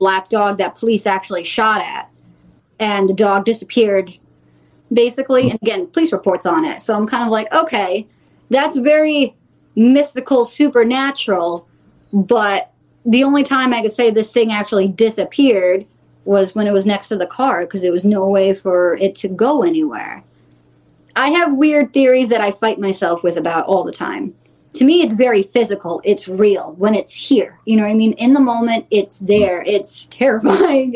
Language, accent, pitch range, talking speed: English, American, 195-255 Hz, 180 wpm